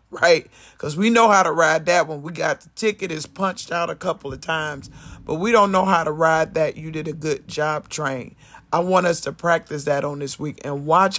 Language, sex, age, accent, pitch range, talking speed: English, male, 50-69, American, 150-185 Hz, 240 wpm